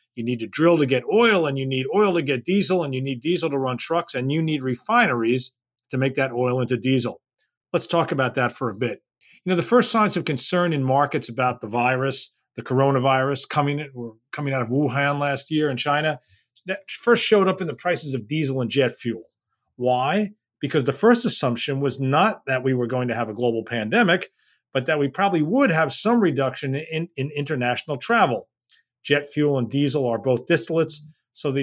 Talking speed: 210 wpm